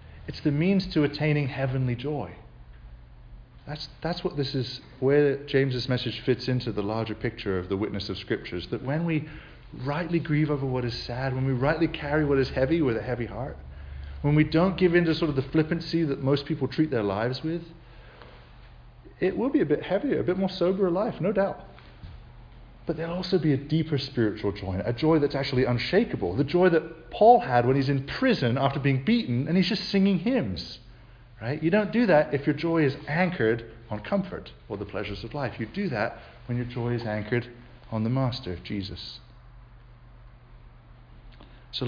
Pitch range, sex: 120-165 Hz, male